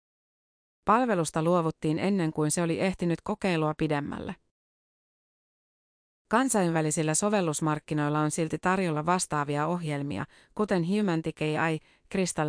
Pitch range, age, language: 155-185 Hz, 30-49, Finnish